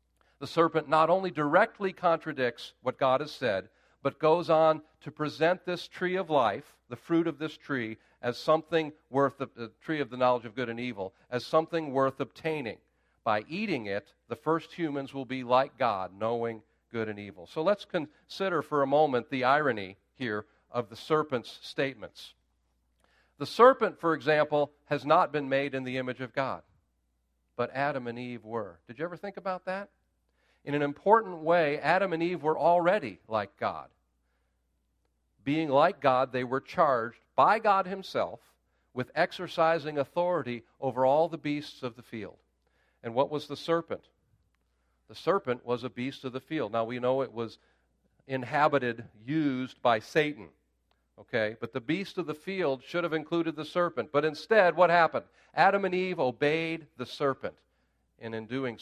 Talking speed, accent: 170 wpm, American